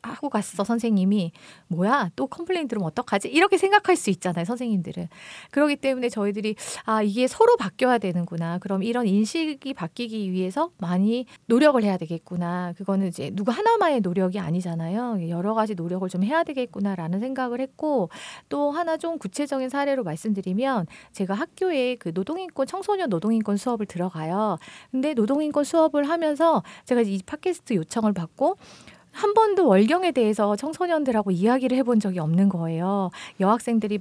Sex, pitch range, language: female, 195-285 Hz, Korean